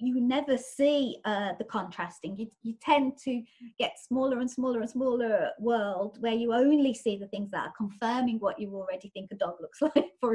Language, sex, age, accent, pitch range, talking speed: English, female, 30-49, British, 205-250 Hz, 205 wpm